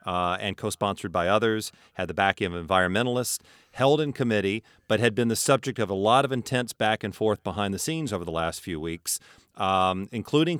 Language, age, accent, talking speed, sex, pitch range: English, 40-59, American, 205 wpm, male, 95-115 Hz